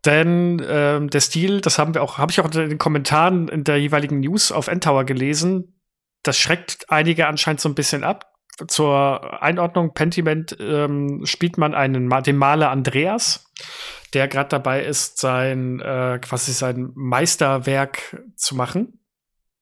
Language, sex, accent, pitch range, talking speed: German, male, German, 135-170 Hz, 145 wpm